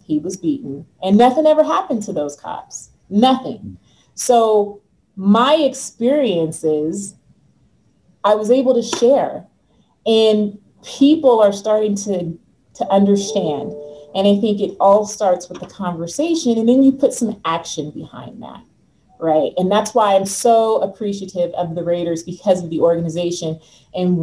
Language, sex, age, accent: English, female, 30-49, American